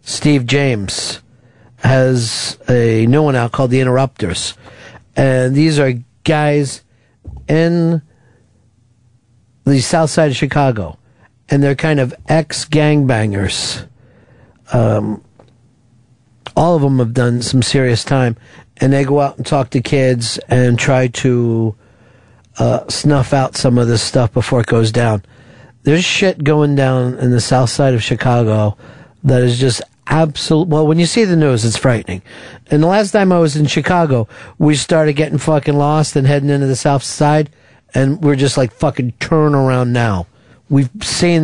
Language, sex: English, male